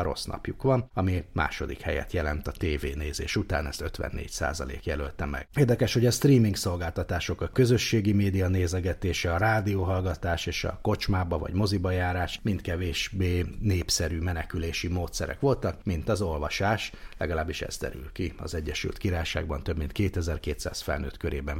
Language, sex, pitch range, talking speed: Hungarian, male, 85-105 Hz, 145 wpm